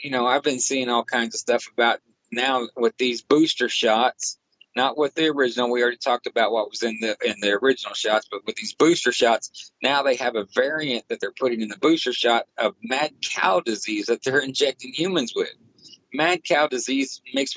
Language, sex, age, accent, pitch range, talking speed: English, male, 40-59, American, 115-155 Hz, 210 wpm